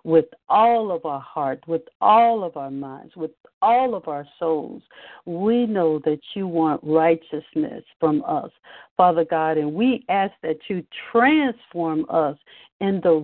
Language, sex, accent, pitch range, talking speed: English, female, American, 170-250 Hz, 155 wpm